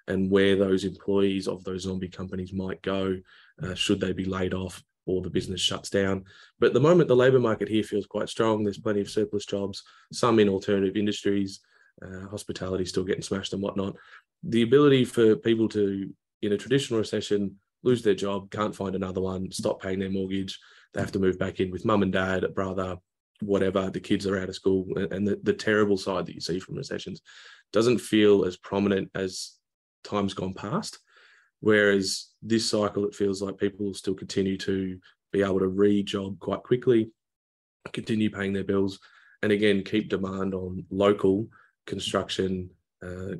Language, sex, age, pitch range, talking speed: English, male, 20-39, 95-105 Hz, 185 wpm